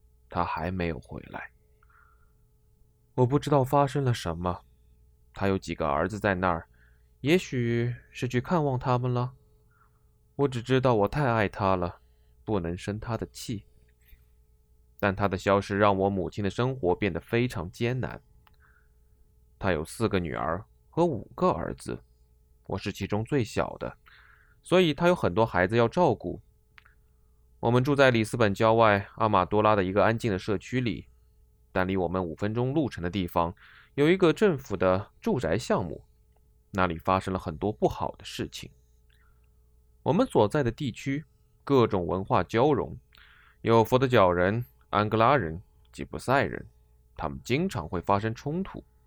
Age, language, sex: 20-39, Chinese, male